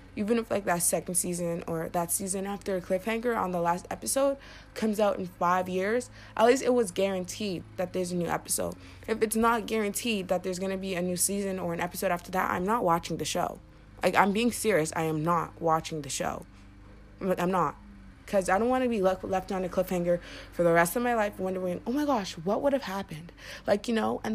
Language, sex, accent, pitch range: English, female, American, 165-210 Hz